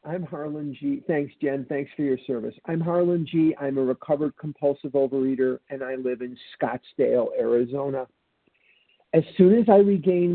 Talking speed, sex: 160 wpm, male